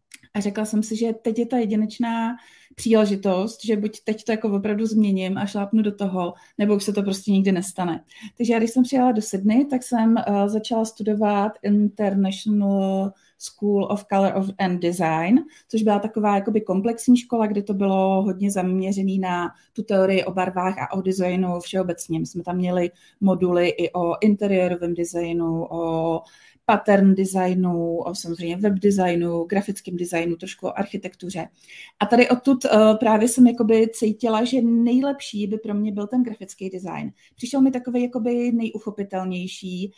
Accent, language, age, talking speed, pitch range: native, Czech, 30-49, 160 wpm, 190-230 Hz